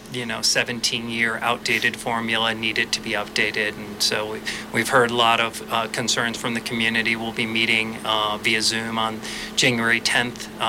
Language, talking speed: English, 180 wpm